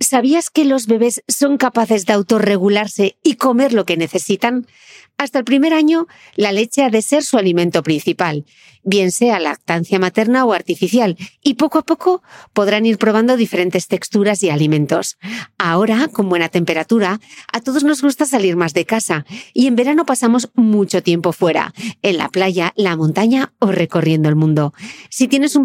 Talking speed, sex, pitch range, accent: 170 wpm, female, 175-240 Hz, Spanish